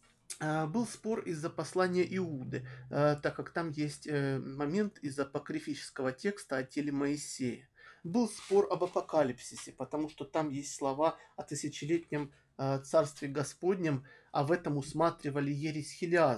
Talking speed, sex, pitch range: 125 wpm, male, 145-180 Hz